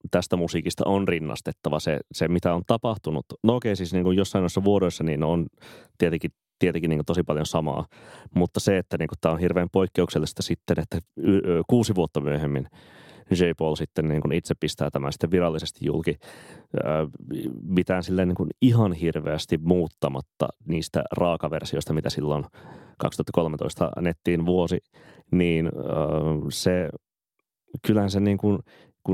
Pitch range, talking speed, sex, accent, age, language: 80-95 Hz, 135 wpm, male, native, 30-49, Finnish